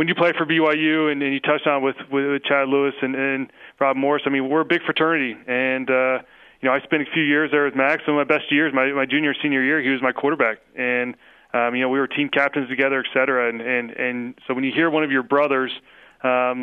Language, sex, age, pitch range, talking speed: English, male, 30-49, 130-150 Hz, 265 wpm